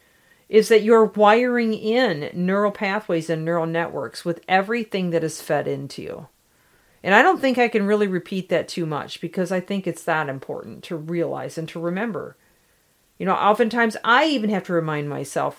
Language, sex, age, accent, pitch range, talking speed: English, female, 50-69, American, 175-225 Hz, 185 wpm